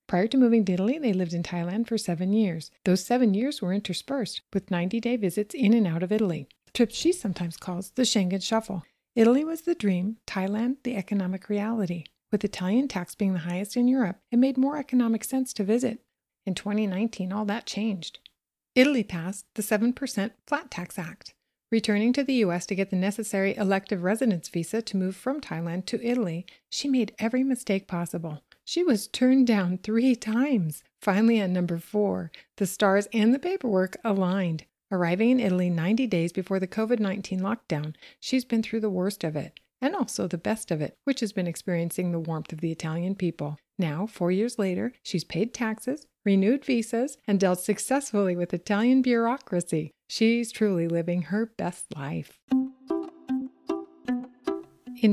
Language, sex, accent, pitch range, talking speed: English, female, American, 180-240 Hz, 175 wpm